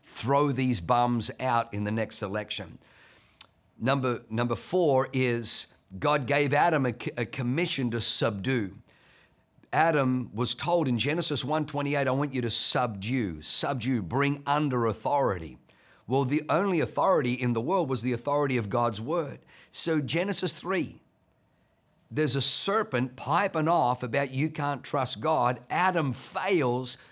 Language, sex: English, male